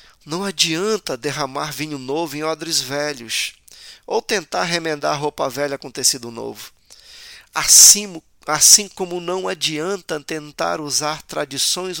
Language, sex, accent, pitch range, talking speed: Portuguese, male, Brazilian, 140-190 Hz, 120 wpm